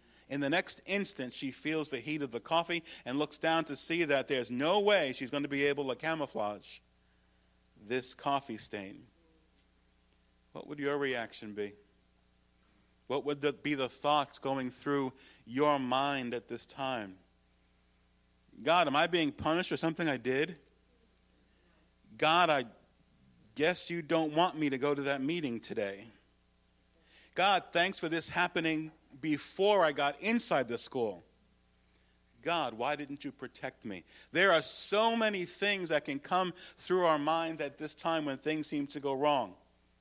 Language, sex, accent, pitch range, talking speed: English, male, American, 105-165 Hz, 160 wpm